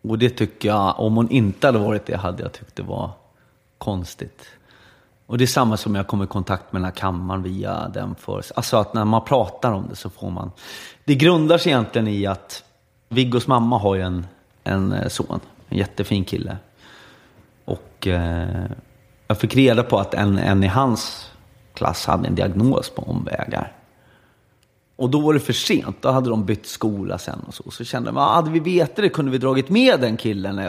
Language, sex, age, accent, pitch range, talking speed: English, male, 30-49, Swedish, 100-130 Hz, 195 wpm